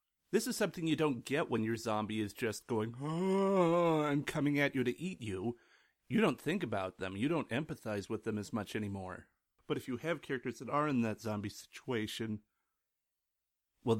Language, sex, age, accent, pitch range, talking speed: English, male, 30-49, American, 105-150 Hz, 195 wpm